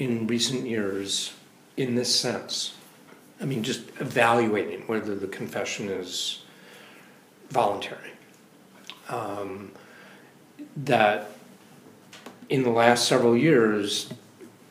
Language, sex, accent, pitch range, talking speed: English, male, American, 100-120 Hz, 90 wpm